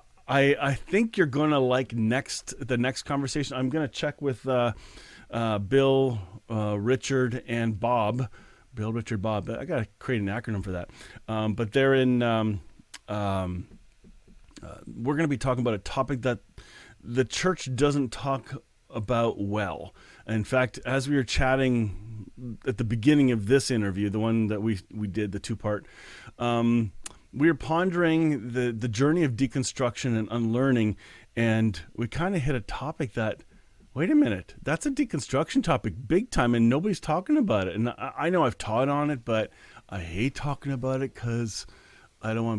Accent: American